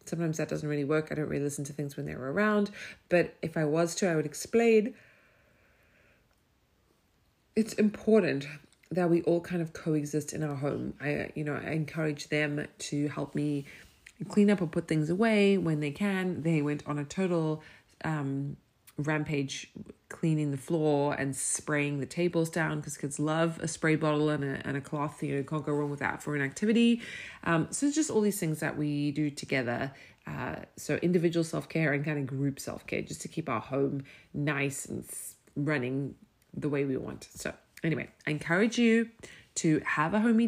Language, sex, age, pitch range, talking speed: English, female, 30-49, 145-170 Hz, 190 wpm